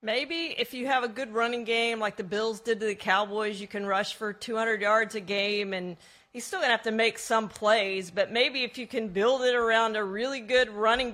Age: 40-59